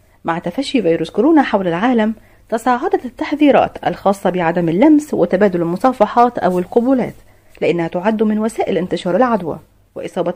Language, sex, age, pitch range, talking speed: Arabic, female, 40-59, 170-240 Hz, 125 wpm